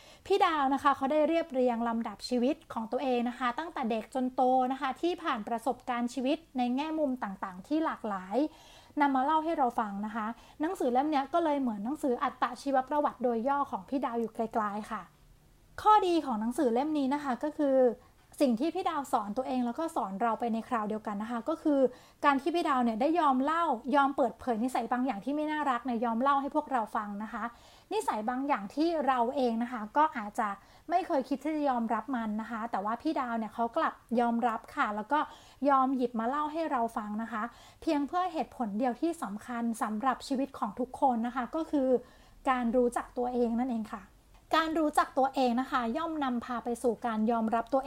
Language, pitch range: Thai, 235-285 Hz